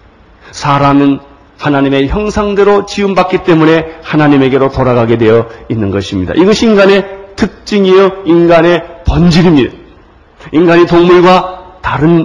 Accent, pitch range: native, 130-210 Hz